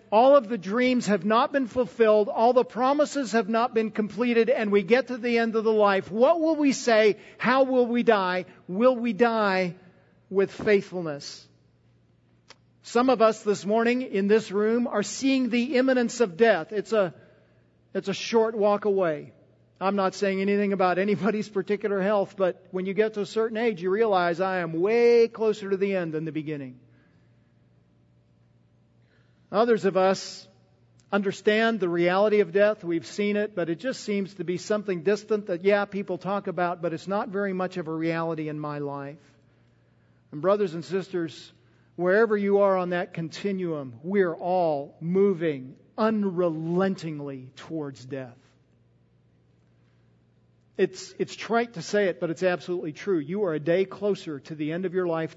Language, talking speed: English, 170 wpm